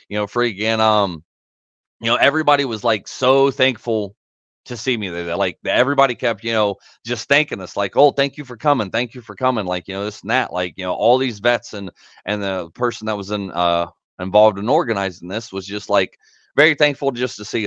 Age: 30-49